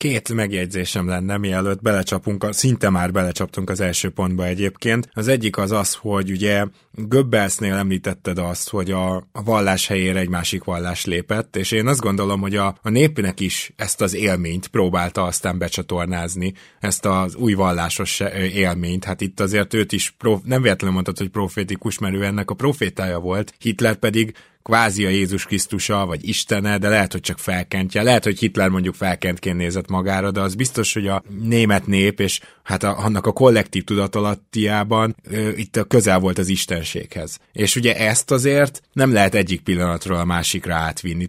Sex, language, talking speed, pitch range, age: male, Hungarian, 170 wpm, 95-110 Hz, 20-39